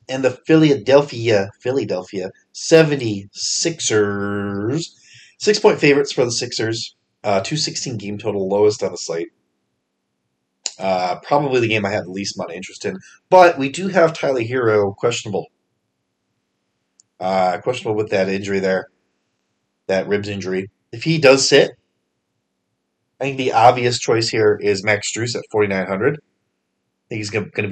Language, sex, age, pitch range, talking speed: English, male, 30-49, 100-130 Hz, 145 wpm